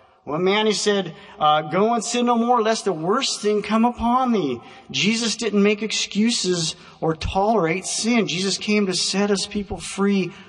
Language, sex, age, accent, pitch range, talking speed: English, male, 40-59, American, 180-230 Hz, 175 wpm